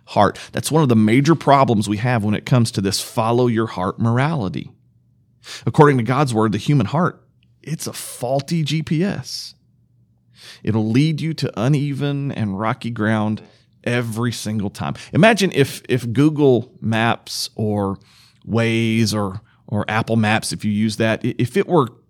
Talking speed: 155 wpm